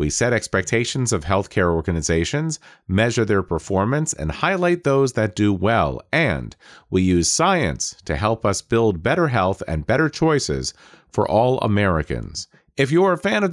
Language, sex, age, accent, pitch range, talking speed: English, male, 40-59, American, 95-150 Hz, 160 wpm